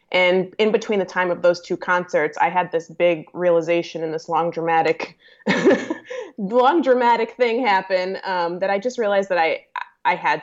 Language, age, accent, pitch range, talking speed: English, 20-39, American, 165-185 Hz, 180 wpm